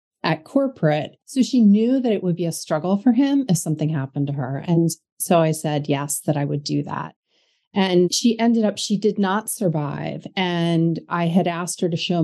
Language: English